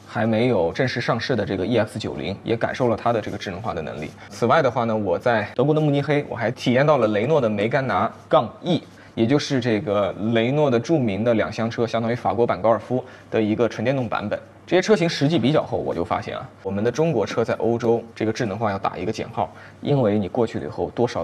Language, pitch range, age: Chinese, 100-125 Hz, 20-39